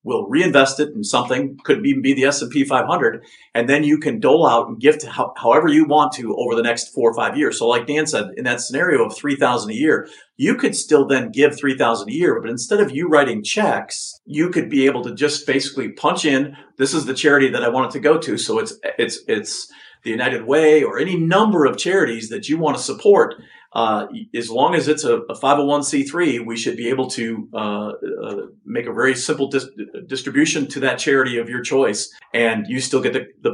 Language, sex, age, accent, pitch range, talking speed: English, male, 50-69, American, 125-165 Hz, 225 wpm